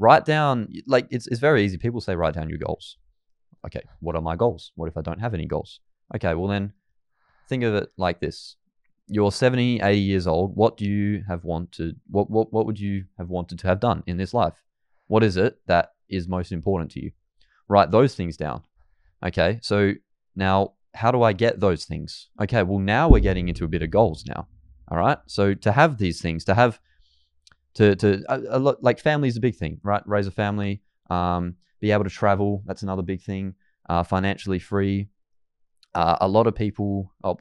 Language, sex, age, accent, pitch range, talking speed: English, male, 20-39, Australian, 85-105 Hz, 205 wpm